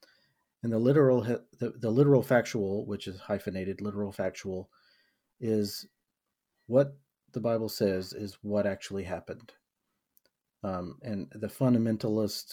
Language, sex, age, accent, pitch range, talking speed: English, male, 40-59, American, 95-110 Hz, 120 wpm